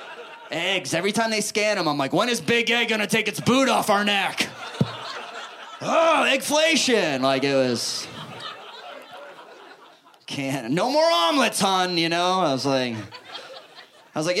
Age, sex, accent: 30-49, male, American